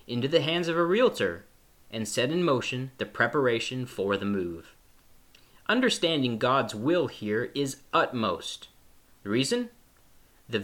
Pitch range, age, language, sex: 110-165 Hz, 30-49, English, male